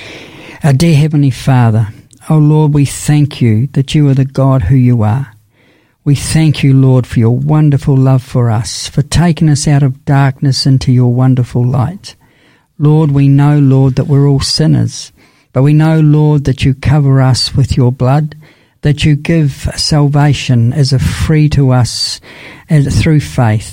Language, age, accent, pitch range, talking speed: English, 60-79, Australian, 130-150 Hz, 170 wpm